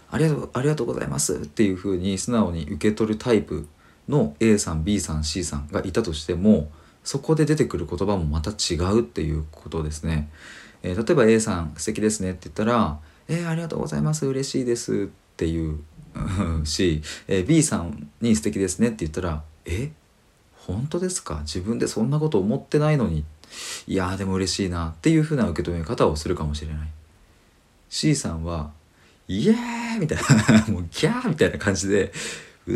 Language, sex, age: Japanese, male, 40-59